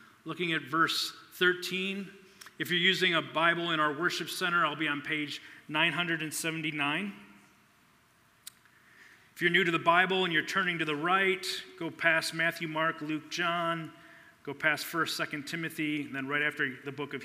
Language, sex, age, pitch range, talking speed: English, male, 40-59, 155-220 Hz, 165 wpm